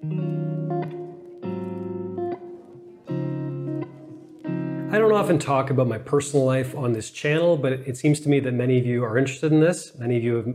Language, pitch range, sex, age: English, 125-155 Hz, male, 30-49